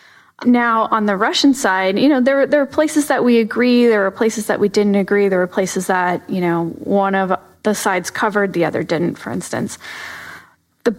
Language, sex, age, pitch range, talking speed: English, female, 30-49, 185-230 Hz, 210 wpm